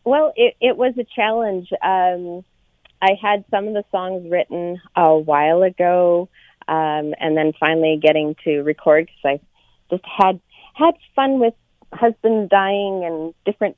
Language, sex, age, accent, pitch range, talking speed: English, female, 40-59, American, 150-205 Hz, 150 wpm